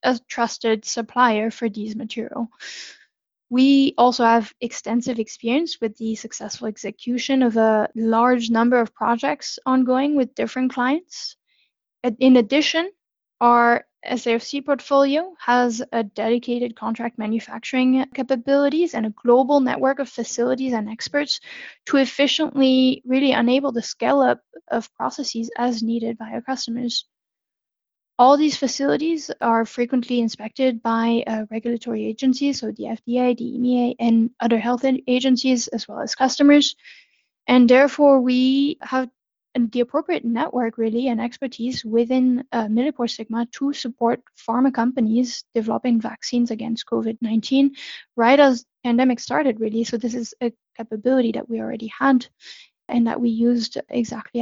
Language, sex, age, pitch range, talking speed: English, female, 10-29, 230-265 Hz, 135 wpm